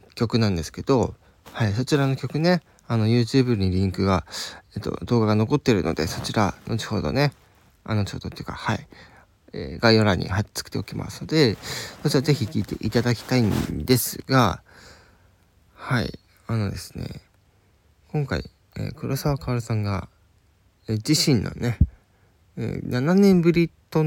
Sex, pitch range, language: male, 95-125 Hz, Japanese